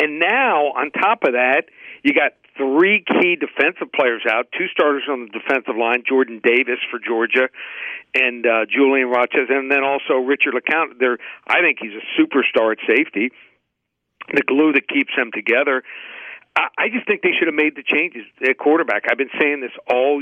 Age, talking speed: 50-69, 185 wpm